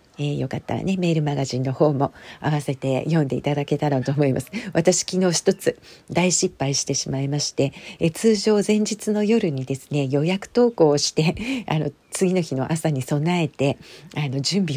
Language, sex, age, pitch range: Japanese, female, 50-69, 140-170 Hz